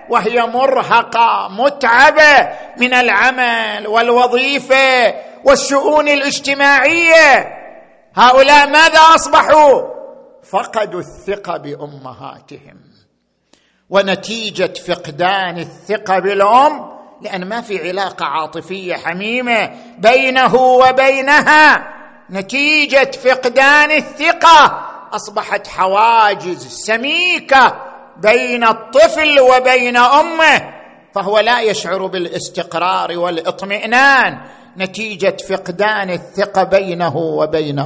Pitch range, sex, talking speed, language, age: 175-260 Hz, male, 75 wpm, Arabic, 50-69